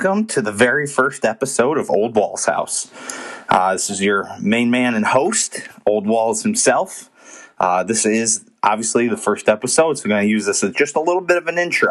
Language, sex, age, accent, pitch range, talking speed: English, male, 30-49, American, 115-145 Hz, 210 wpm